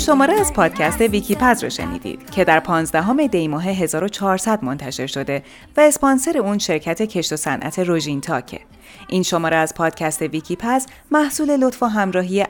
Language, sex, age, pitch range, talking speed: Persian, female, 30-49, 150-240 Hz, 150 wpm